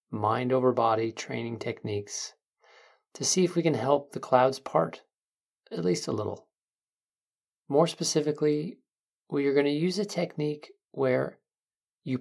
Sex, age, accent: male, 40-59, American